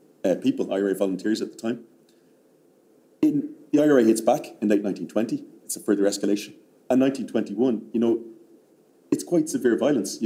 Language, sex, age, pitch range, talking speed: English, male, 30-49, 100-125 Hz, 160 wpm